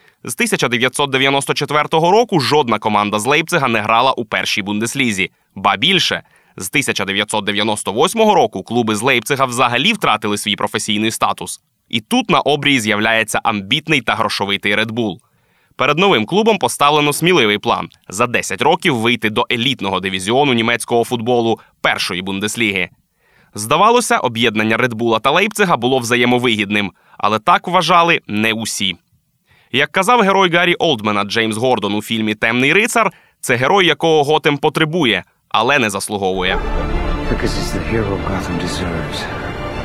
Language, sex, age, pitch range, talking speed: Ukrainian, male, 20-39, 105-150 Hz, 125 wpm